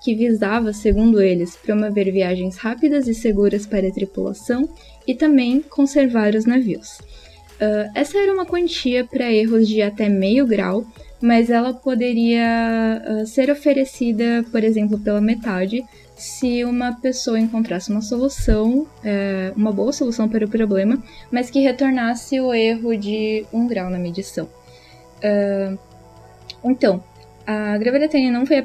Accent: Brazilian